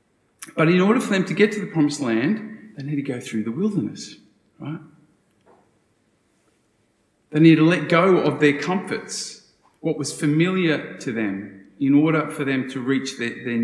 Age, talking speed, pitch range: 40-59, 175 wpm, 120-170 Hz